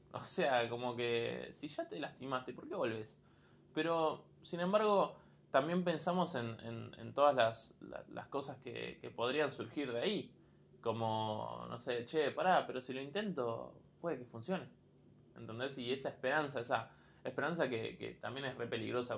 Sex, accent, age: male, Argentinian, 20-39